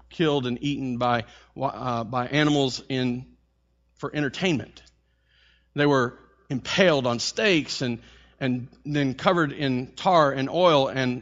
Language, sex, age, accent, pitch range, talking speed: English, male, 40-59, American, 110-170 Hz, 130 wpm